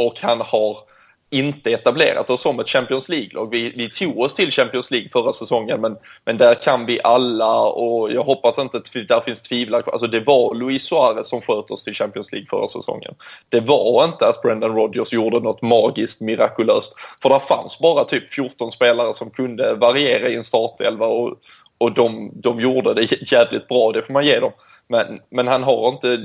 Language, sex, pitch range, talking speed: Swedish, male, 120-135 Hz, 200 wpm